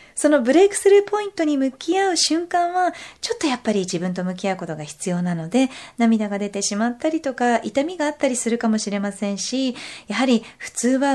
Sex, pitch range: female, 195-290 Hz